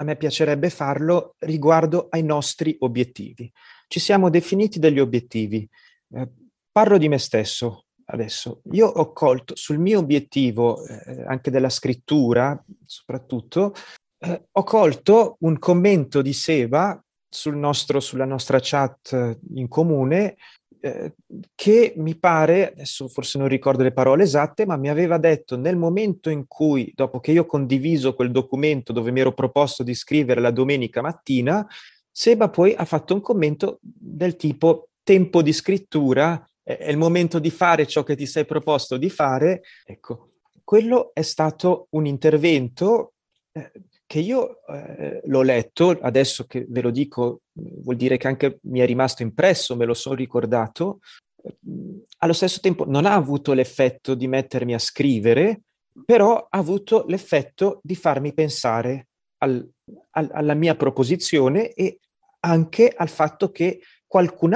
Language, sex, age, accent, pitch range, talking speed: Italian, male, 30-49, native, 130-175 Hz, 145 wpm